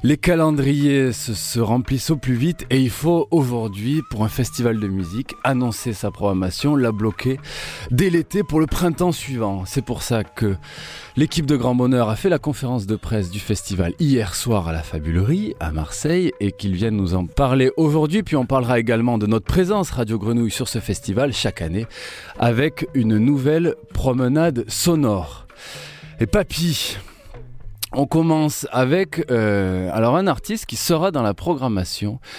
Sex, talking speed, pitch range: male, 170 wpm, 100-140 Hz